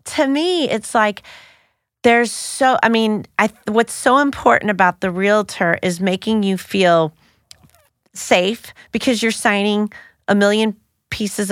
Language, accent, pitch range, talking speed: English, American, 185-235 Hz, 135 wpm